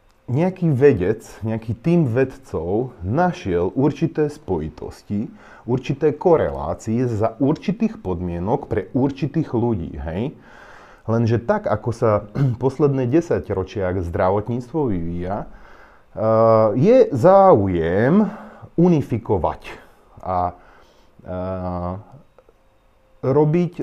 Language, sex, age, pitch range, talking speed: Slovak, male, 30-49, 100-145 Hz, 75 wpm